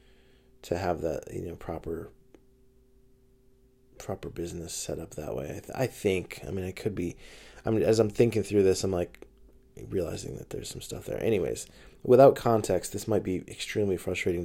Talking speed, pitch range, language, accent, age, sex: 185 wpm, 100-130 Hz, English, American, 20-39, male